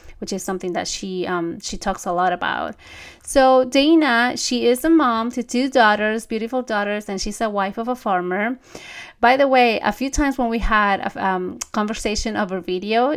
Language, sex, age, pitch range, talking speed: English, female, 30-49, 195-235 Hz, 200 wpm